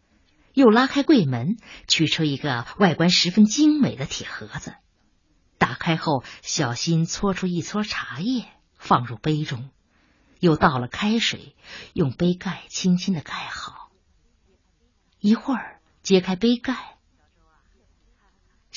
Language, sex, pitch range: Chinese, female, 130-205 Hz